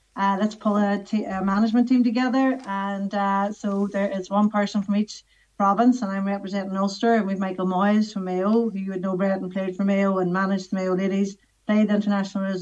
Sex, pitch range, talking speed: female, 195-220 Hz, 220 wpm